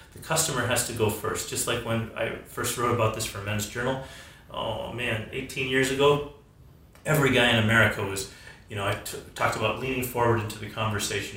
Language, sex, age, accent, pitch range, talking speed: English, male, 30-49, American, 110-145 Hz, 200 wpm